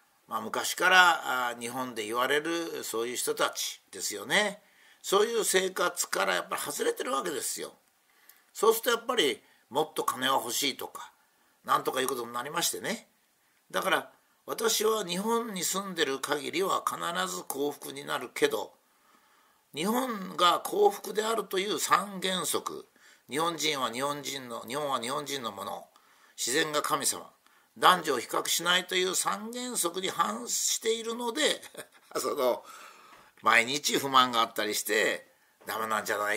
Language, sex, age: Japanese, male, 50-69